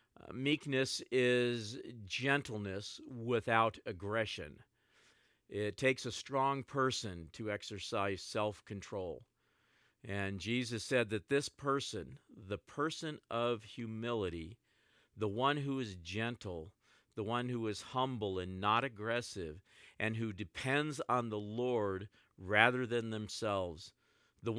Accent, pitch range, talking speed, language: American, 105-125 Hz, 115 wpm, English